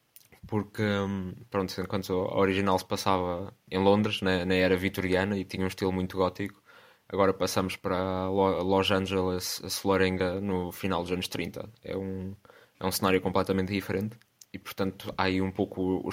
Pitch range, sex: 95-105 Hz, male